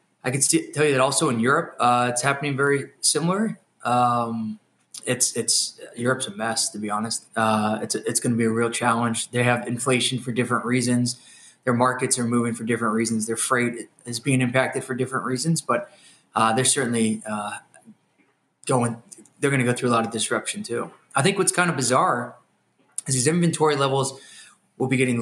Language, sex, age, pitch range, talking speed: English, male, 20-39, 115-135 Hz, 185 wpm